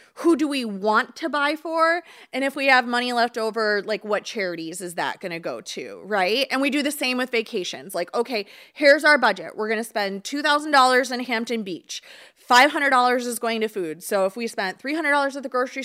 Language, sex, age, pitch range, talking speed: English, female, 20-39, 210-280 Hz, 215 wpm